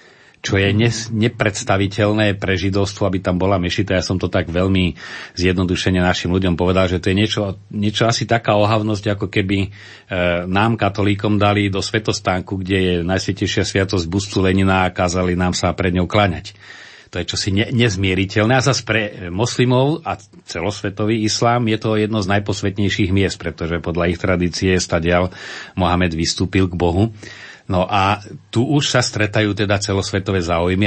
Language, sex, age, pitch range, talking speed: Slovak, male, 40-59, 90-105 Hz, 165 wpm